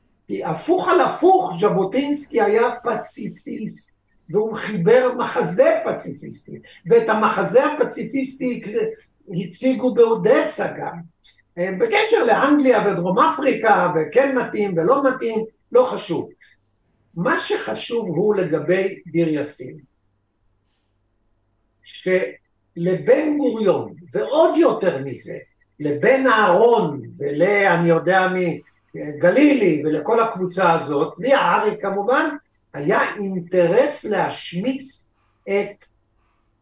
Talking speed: 85 wpm